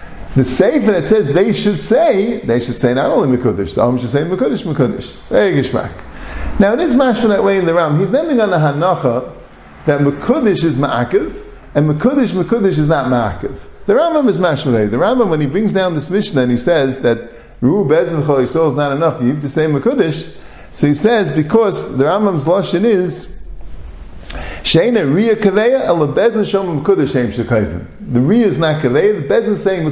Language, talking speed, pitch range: English, 180 wpm, 125-195 Hz